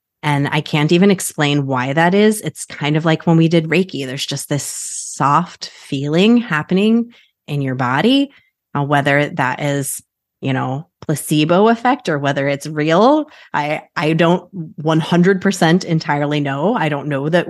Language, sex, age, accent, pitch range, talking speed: English, female, 30-49, American, 145-185 Hz, 160 wpm